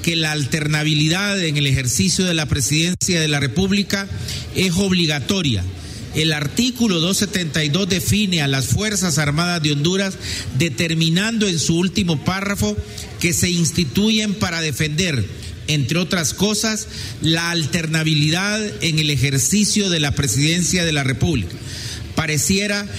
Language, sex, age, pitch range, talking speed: Spanish, male, 50-69, 135-185 Hz, 130 wpm